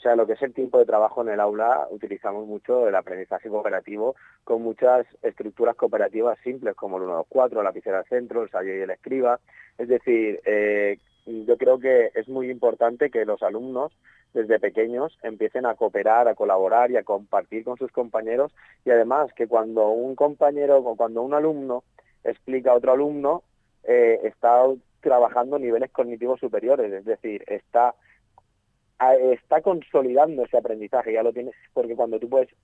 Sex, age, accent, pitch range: male, 30-49, Spanish, 115-150 Hz